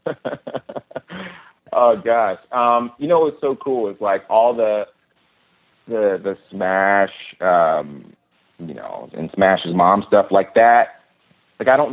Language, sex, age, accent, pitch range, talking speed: English, male, 30-49, American, 90-115 Hz, 135 wpm